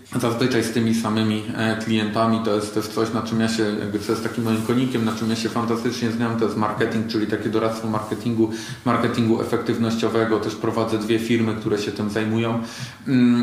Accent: native